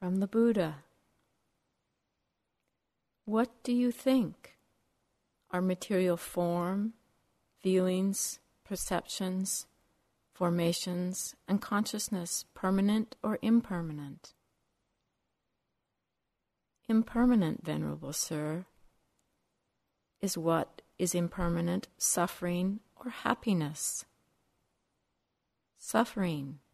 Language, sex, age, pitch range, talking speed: English, female, 60-79, 170-200 Hz, 65 wpm